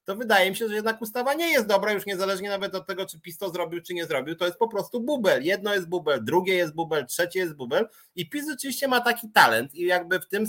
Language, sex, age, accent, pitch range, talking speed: Polish, male, 30-49, native, 170-230 Hz, 265 wpm